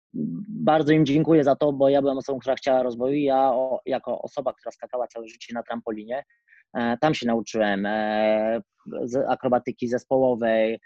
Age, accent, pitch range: 20-39, native, 115-130 Hz